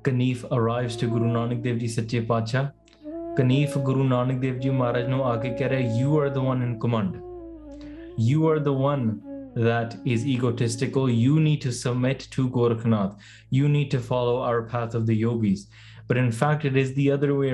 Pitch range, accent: 120-145 Hz, Indian